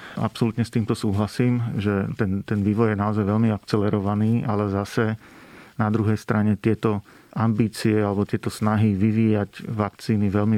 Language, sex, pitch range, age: Slovak, male, 100-110 Hz, 40-59